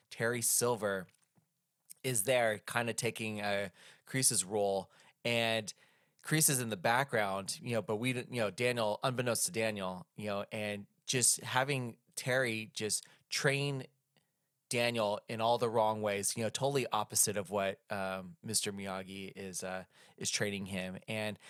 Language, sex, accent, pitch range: English, male, American, 105-130 Hz